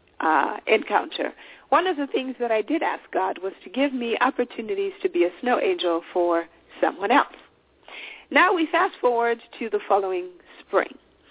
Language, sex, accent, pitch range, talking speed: English, female, American, 205-335 Hz, 170 wpm